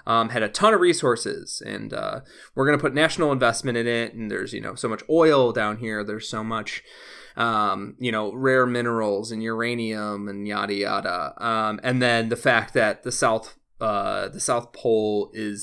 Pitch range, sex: 115-150 Hz, male